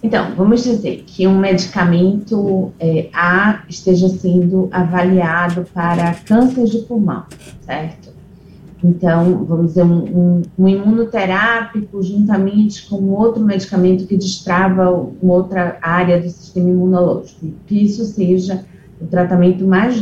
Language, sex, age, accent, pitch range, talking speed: Portuguese, female, 30-49, Brazilian, 175-205 Hz, 125 wpm